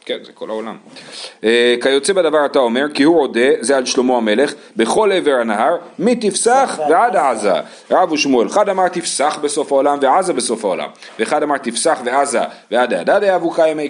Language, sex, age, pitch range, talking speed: Hebrew, male, 40-59, 120-170 Hz, 170 wpm